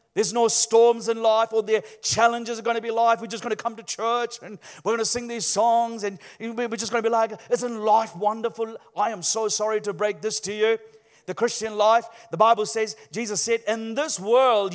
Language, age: English, 40-59